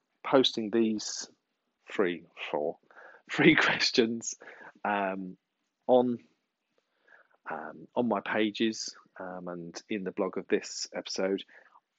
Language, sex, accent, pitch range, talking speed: English, male, British, 100-140 Hz, 95 wpm